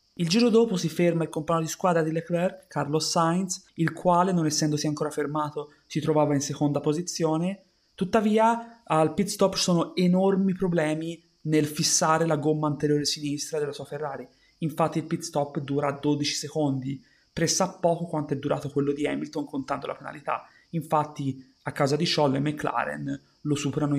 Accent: native